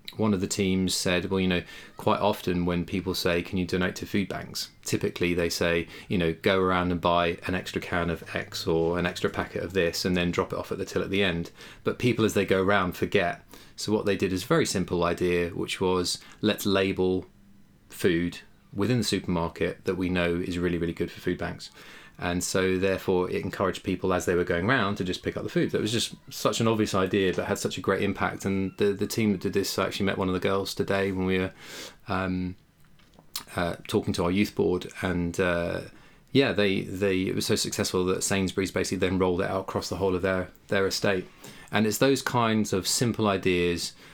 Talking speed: 225 wpm